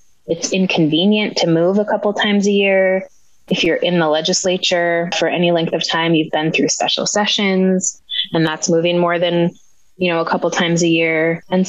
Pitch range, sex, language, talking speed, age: 160-185 Hz, female, English, 190 wpm, 20-39